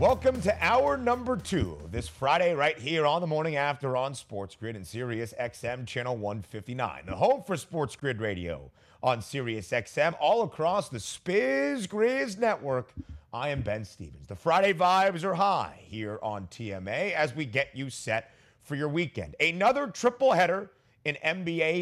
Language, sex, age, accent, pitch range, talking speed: English, male, 30-49, American, 115-175 Hz, 170 wpm